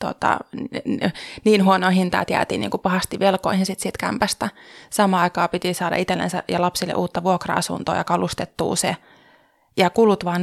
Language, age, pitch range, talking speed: Finnish, 20-39, 180-210 Hz, 160 wpm